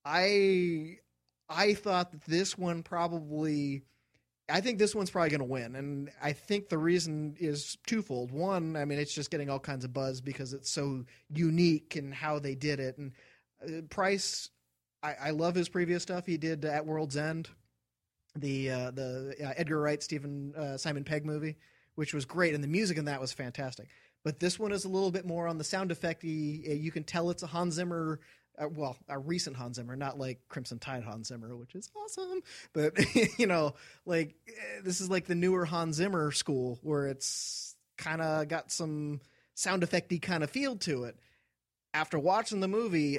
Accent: American